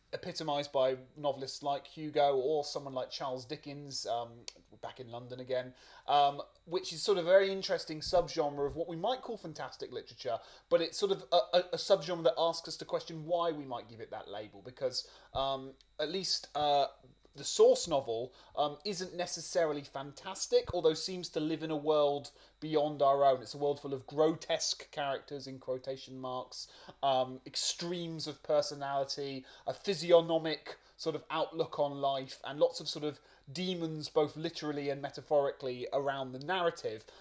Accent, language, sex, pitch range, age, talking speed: British, English, male, 130-165 Hz, 30-49, 175 wpm